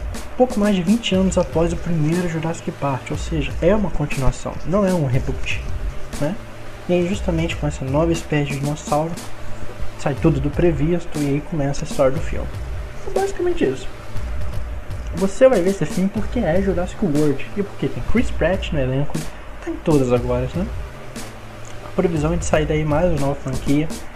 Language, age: English, 20-39